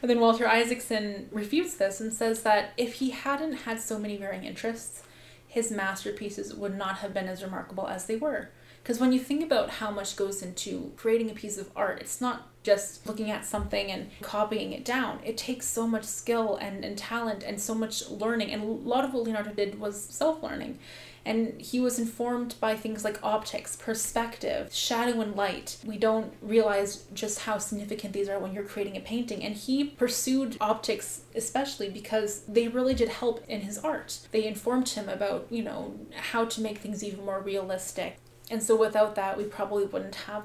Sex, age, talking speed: female, 20-39, 195 wpm